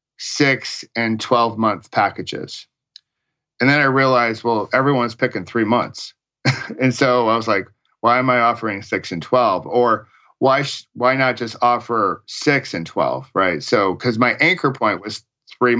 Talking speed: 165 wpm